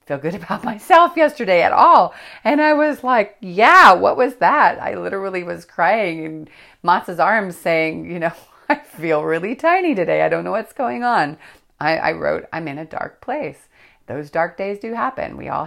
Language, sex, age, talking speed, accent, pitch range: English, female, 40-59, 195 wpm, American, 150-170 Hz